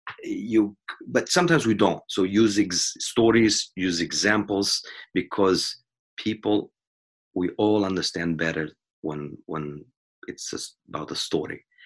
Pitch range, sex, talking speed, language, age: 85-100 Hz, male, 115 wpm, English, 30-49